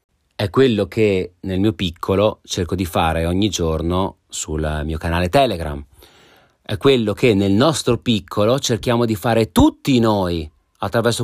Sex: male